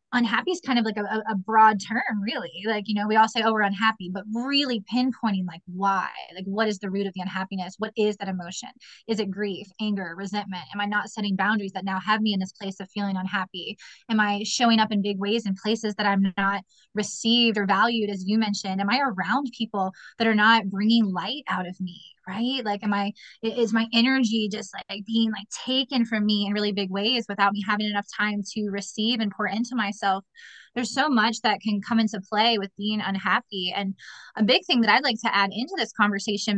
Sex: female